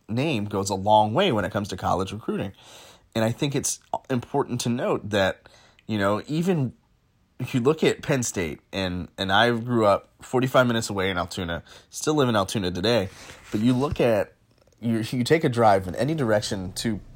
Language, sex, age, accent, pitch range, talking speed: English, male, 20-39, American, 110-130 Hz, 200 wpm